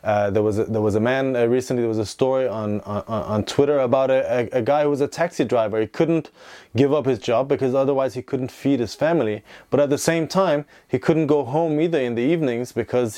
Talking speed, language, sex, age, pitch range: 245 wpm, English, male, 20-39, 115-145 Hz